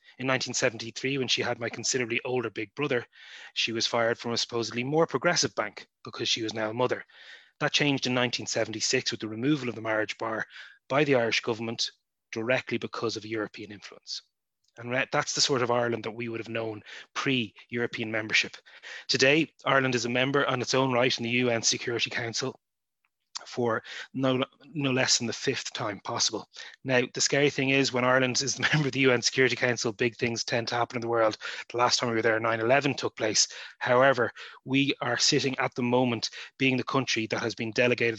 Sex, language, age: male, English, 20-39